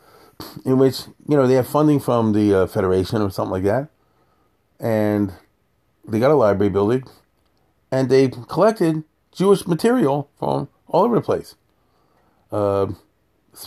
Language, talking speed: English, 140 wpm